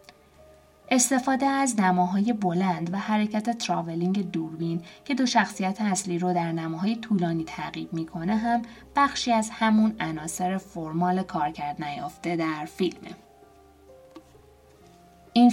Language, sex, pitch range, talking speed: Persian, female, 170-225 Hz, 110 wpm